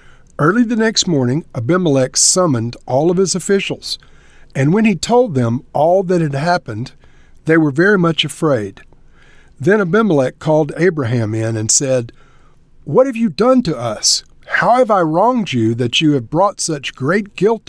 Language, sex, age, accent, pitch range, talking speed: English, male, 50-69, American, 135-190 Hz, 165 wpm